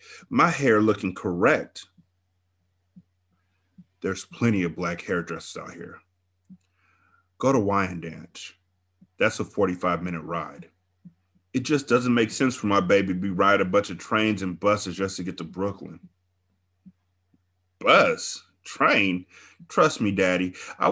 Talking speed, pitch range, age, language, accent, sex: 130 wpm, 90-105 Hz, 30-49, English, American, male